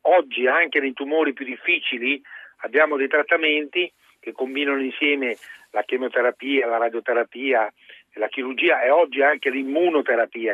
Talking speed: 125 wpm